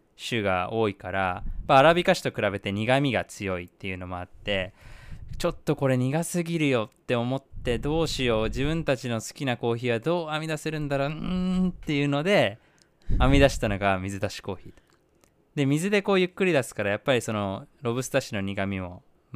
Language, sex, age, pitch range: Japanese, male, 20-39, 100-150 Hz